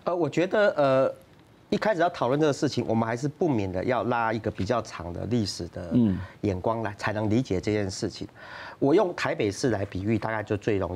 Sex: male